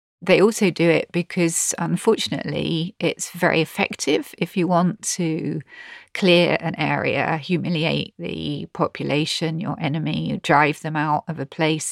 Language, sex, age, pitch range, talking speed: English, female, 40-59, 155-185 Hz, 135 wpm